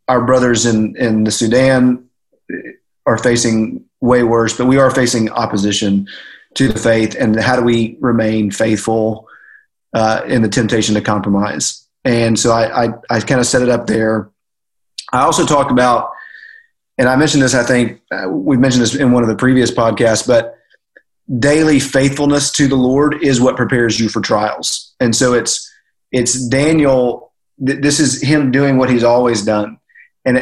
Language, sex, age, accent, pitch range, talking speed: English, male, 30-49, American, 115-135 Hz, 170 wpm